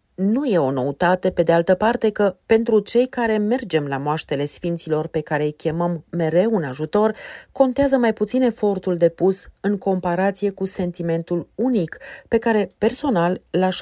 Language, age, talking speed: Romanian, 40-59, 160 wpm